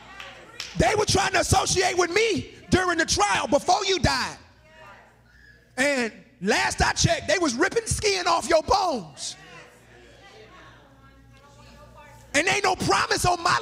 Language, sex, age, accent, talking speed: English, male, 30-49, American, 130 wpm